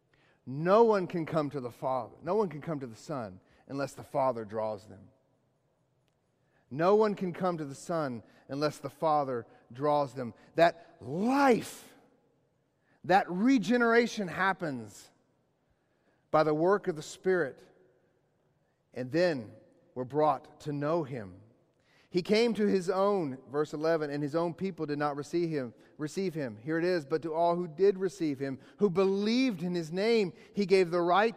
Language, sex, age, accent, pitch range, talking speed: English, male, 40-59, American, 145-195 Hz, 165 wpm